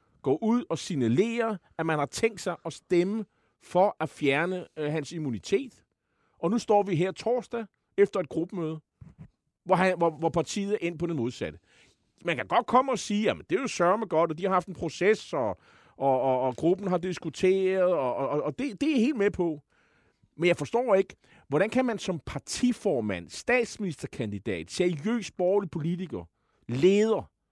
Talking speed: 180 wpm